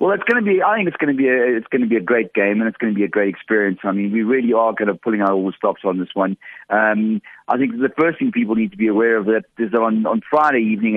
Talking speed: 335 wpm